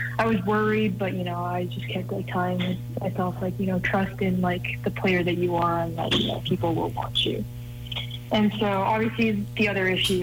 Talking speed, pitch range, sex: 215 wpm, 120-180 Hz, female